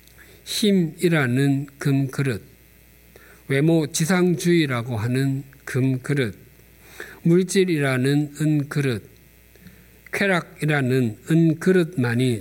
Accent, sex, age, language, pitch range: native, male, 50-69, Korean, 125-165 Hz